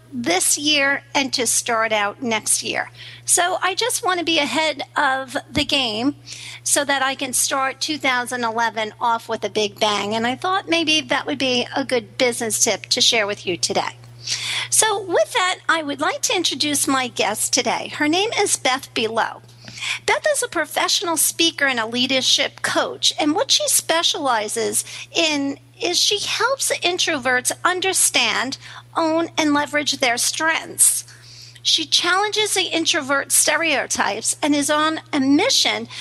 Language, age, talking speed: English, 50-69, 160 wpm